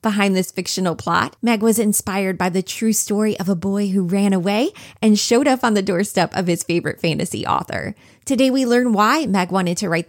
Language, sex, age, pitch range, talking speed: English, female, 20-39, 185-240 Hz, 215 wpm